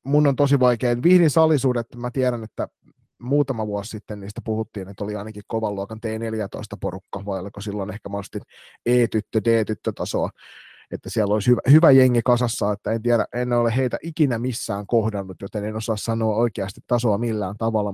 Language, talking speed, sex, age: Finnish, 175 wpm, male, 30-49